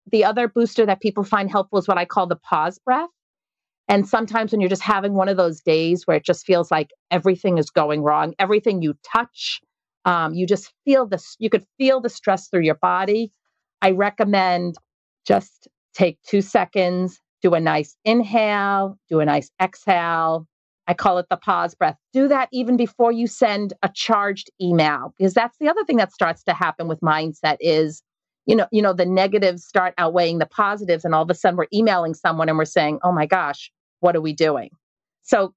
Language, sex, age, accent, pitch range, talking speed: English, female, 40-59, American, 175-215 Hz, 200 wpm